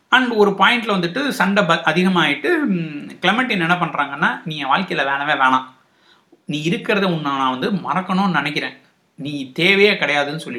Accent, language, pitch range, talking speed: native, Tamil, 160-215 Hz, 130 wpm